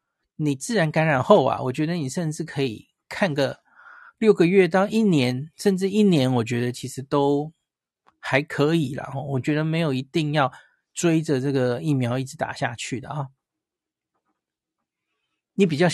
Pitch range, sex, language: 130-165 Hz, male, Chinese